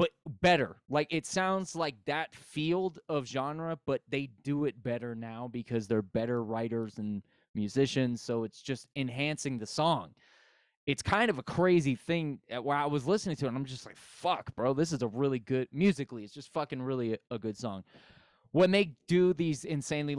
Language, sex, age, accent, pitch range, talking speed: English, male, 20-39, American, 120-150 Hz, 195 wpm